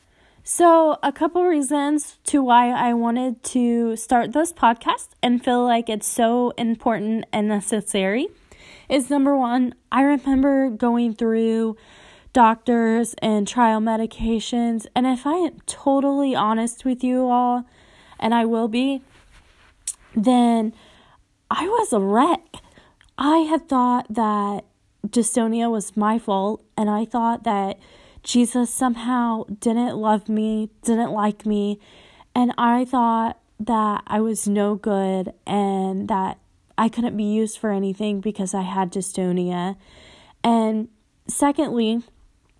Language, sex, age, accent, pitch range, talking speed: English, female, 20-39, American, 220-250 Hz, 130 wpm